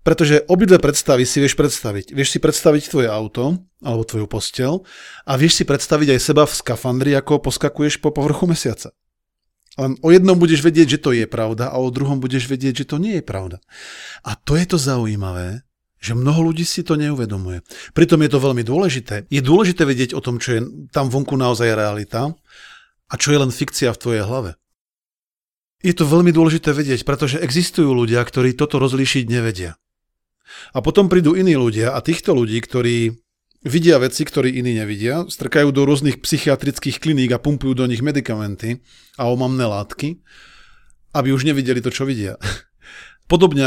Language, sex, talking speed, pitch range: Slovak, male, 175 wpm, 120-150 Hz